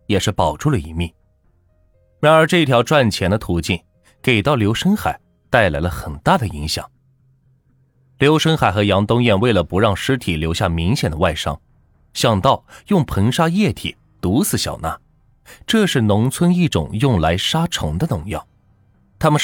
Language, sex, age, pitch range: Chinese, male, 20-39, 90-135 Hz